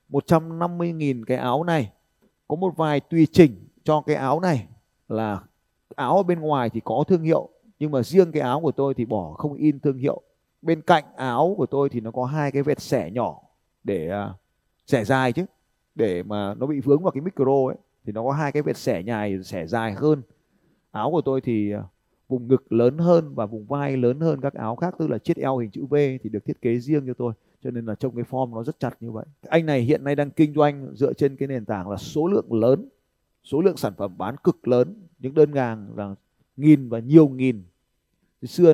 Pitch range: 115-150 Hz